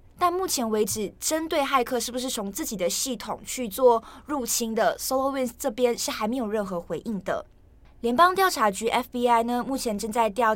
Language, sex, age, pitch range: Chinese, female, 20-39, 215-270 Hz